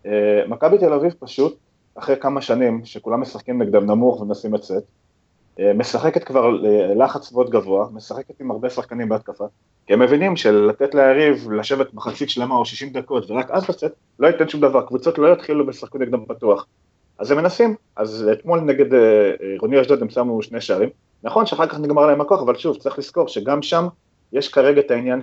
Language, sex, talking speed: Hebrew, male, 190 wpm